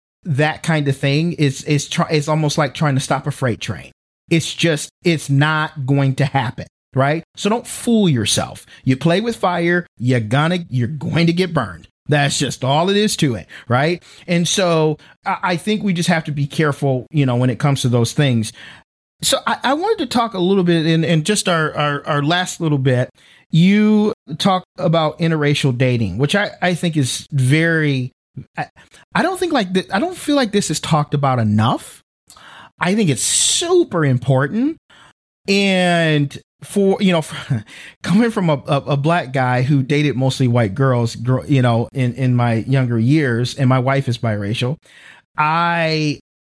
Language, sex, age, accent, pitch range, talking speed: English, male, 40-59, American, 130-170 Hz, 185 wpm